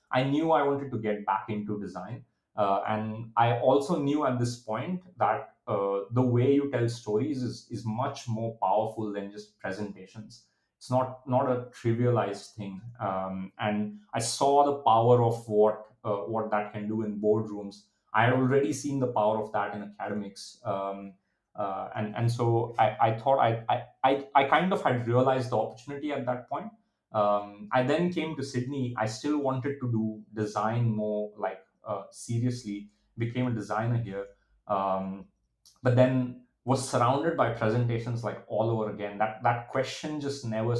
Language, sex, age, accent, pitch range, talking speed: English, male, 30-49, Indian, 105-125 Hz, 175 wpm